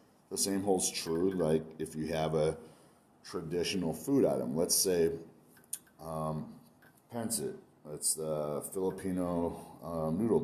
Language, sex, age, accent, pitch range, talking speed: English, male, 30-49, American, 80-105 Hz, 125 wpm